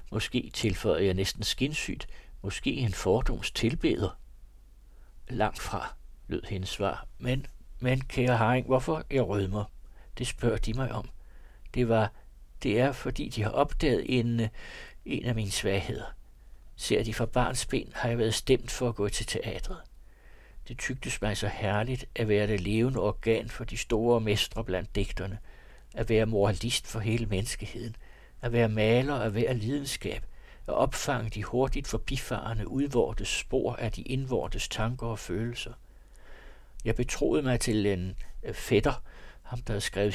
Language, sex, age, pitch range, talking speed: Danish, male, 60-79, 105-125 Hz, 155 wpm